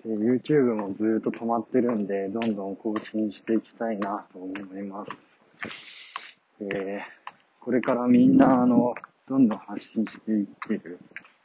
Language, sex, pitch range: Japanese, male, 110-140 Hz